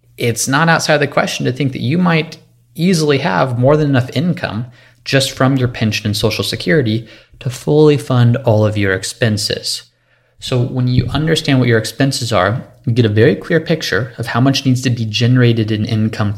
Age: 30-49